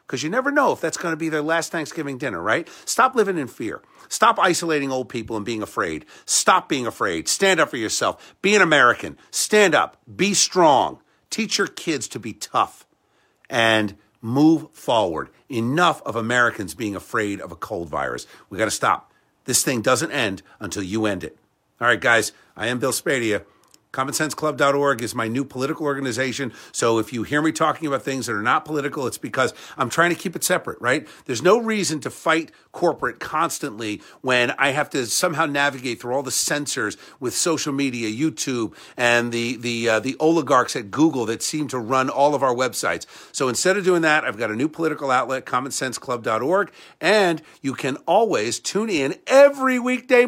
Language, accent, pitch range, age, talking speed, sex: English, American, 125-165 Hz, 50-69, 190 wpm, male